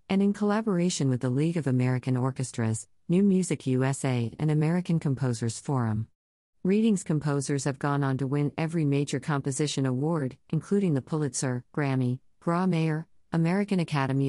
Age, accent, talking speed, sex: 50-69, American, 145 wpm, female